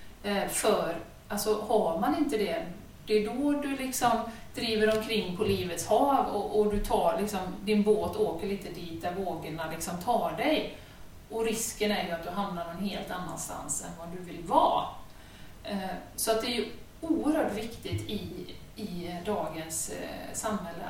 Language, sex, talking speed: Swedish, female, 165 wpm